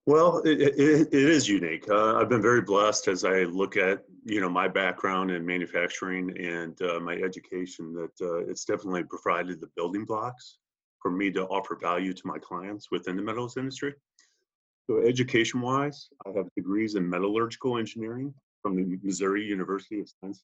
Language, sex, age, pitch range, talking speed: English, male, 30-49, 90-115 Hz, 170 wpm